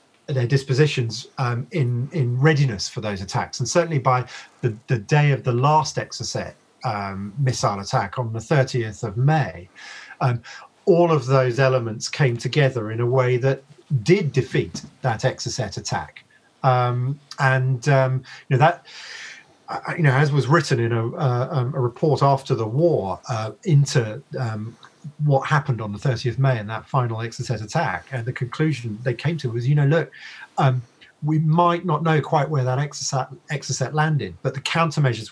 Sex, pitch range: male, 120-145 Hz